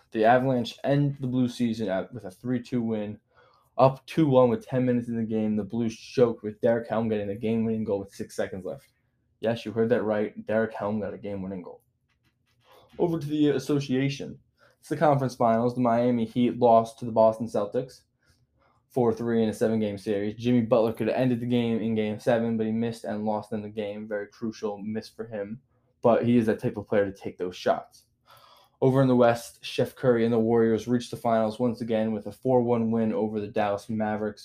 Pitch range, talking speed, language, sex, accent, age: 110-120 Hz, 210 wpm, English, male, American, 10-29